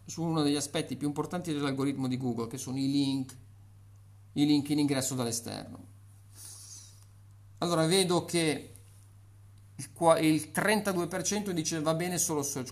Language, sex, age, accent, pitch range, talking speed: Italian, male, 50-69, native, 115-155 Hz, 135 wpm